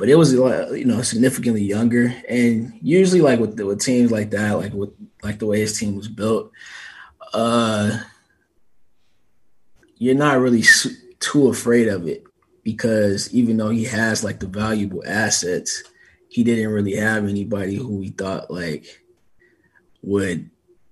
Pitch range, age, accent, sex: 100-120 Hz, 20-39, American, male